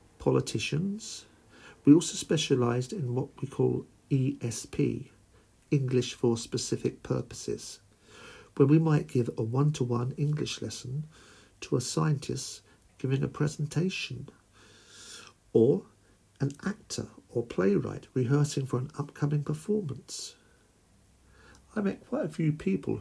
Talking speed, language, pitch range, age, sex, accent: 115 wpm, English, 110-140 Hz, 50-69, male, British